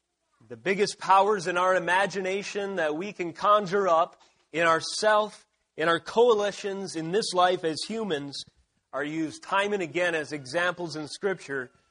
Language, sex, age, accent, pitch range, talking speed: English, male, 30-49, American, 155-200 Hz, 150 wpm